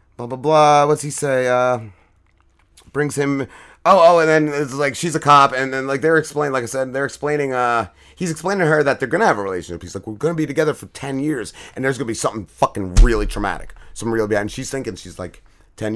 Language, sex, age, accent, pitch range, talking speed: English, male, 30-49, American, 105-140 Hz, 245 wpm